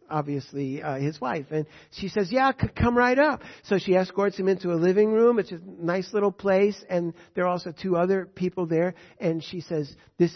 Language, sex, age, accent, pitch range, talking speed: English, male, 60-79, American, 160-220 Hz, 210 wpm